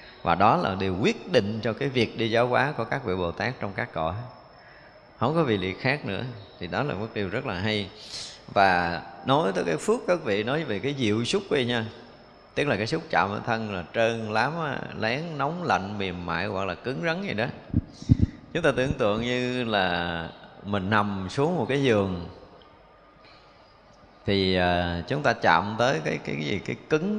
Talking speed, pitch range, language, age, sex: 200 wpm, 100-145 Hz, Vietnamese, 20-39, male